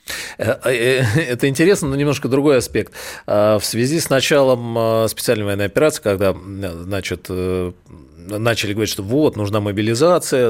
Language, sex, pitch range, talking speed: Russian, male, 95-120 Hz, 120 wpm